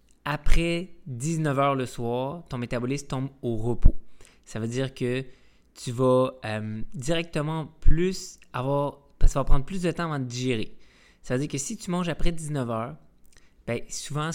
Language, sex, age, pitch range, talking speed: French, male, 20-39, 110-145 Hz, 165 wpm